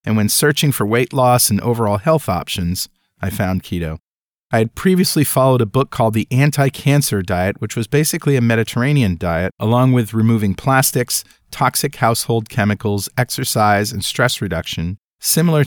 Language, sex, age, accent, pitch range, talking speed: English, male, 40-59, American, 95-130 Hz, 155 wpm